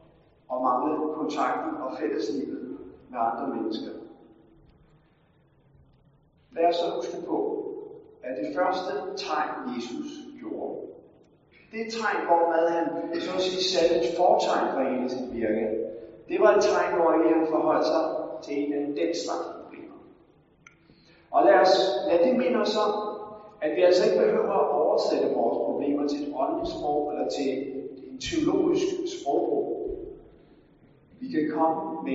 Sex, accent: male, native